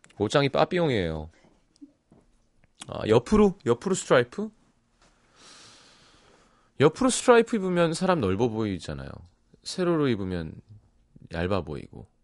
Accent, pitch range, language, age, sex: native, 90-145 Hz, Korean, 30-49, male